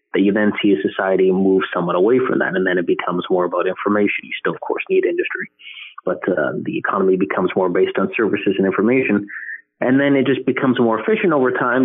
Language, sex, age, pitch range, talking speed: English, male, 30-49, 100-140 Hz, 225 wpm